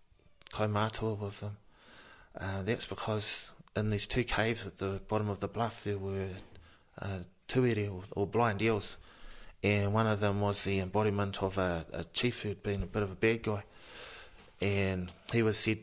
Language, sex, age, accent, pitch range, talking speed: English, male, 20-39, Australian, 100-110 Hz, 180 wpm